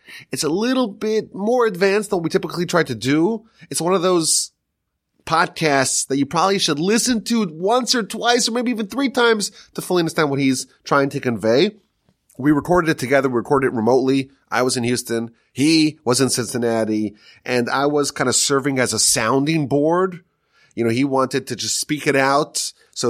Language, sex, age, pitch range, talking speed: English, male, 30-49, 125-165 Hz, 195 wpm